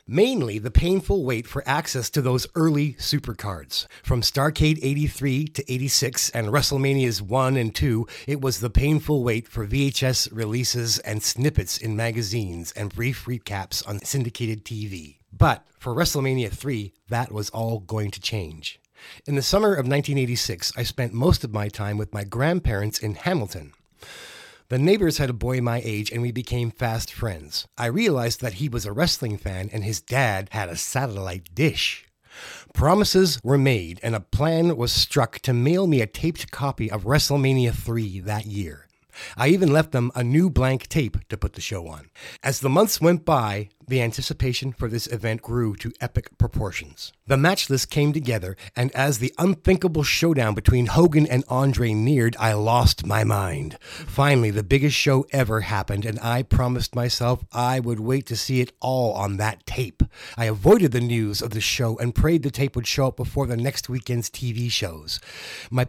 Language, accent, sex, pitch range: English, American, male, 105-135 Hz